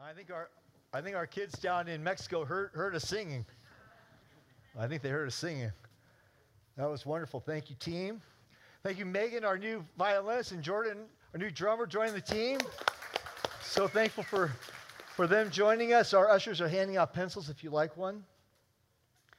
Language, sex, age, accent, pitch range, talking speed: English, male, 40-59, American, 125-190 Hz, 175 wpm